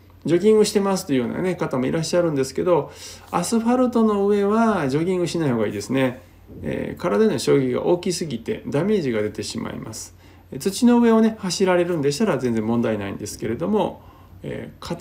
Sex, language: male, Japanese